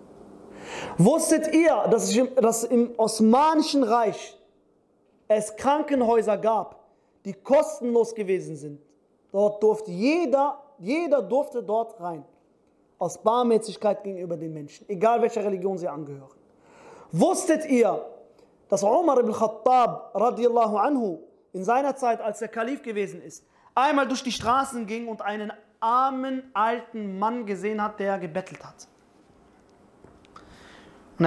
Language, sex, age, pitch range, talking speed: German, male, 30-49, 200-255 Hz, 120 wpm